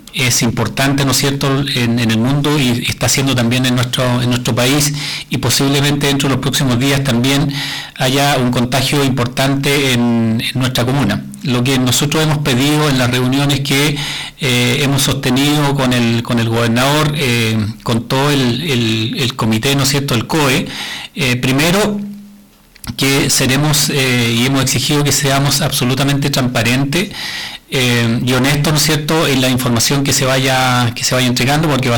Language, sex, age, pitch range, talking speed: Spanish, male, 40-59, 125-145 Hz, 175 wpm